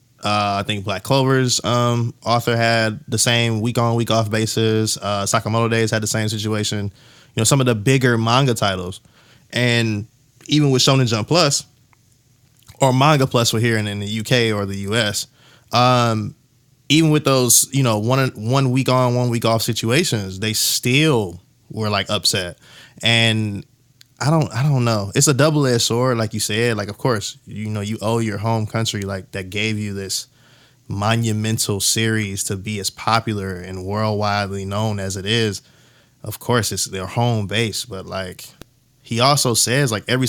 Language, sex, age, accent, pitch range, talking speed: English, male, 20-39, American, 105-130 Hz, 180 wpm